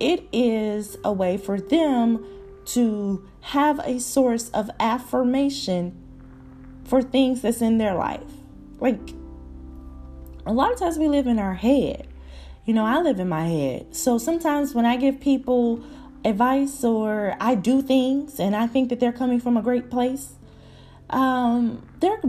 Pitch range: 205-260 Hz